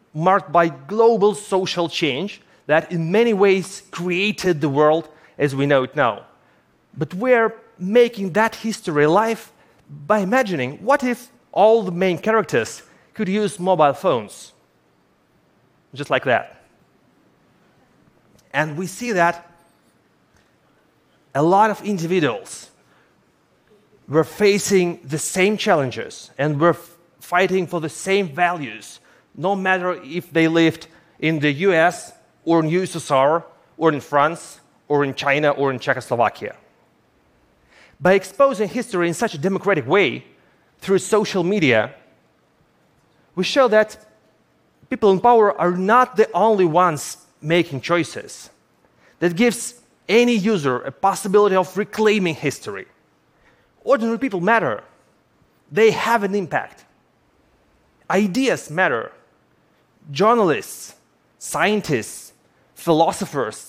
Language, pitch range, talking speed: Portuguese, 155-210 Hz, 115 wpm